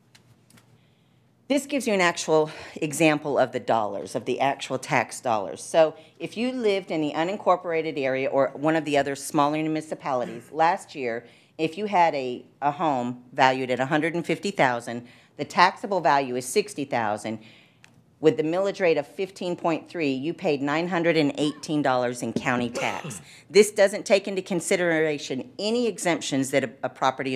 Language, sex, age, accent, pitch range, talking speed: English, female, 50-69, American, 135-165 Hz, 150 wpm